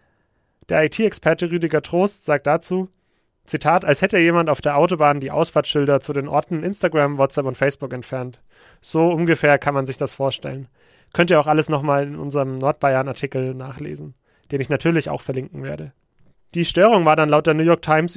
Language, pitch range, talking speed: German, 140-165 Hz, 180 wpm